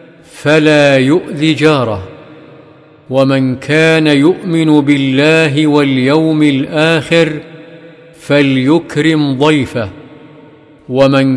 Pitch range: 140-160 Hz